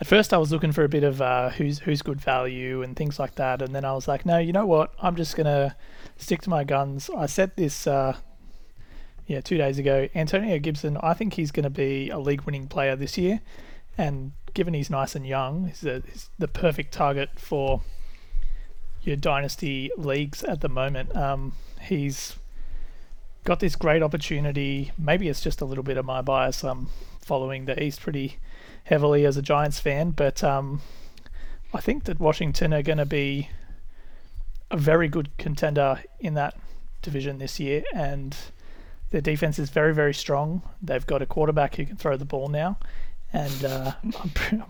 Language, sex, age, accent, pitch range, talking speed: English, male, 30-49, Australian, 135-155 Hz, 185 wpm